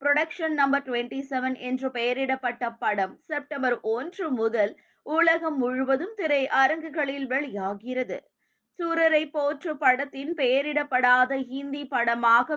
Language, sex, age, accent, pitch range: Tamil, female, 20-39, native, 255-310 Hz